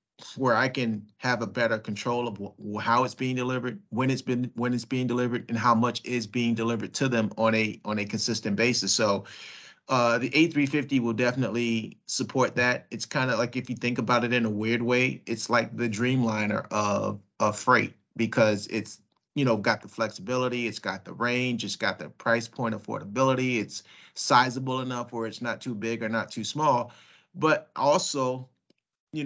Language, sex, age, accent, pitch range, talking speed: English, male, 30-49, American, 110-125 Hz, 195 wpm